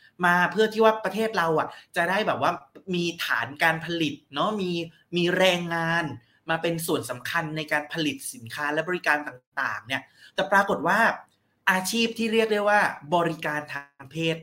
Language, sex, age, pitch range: Thai, male, 20-39, 135-185 Hz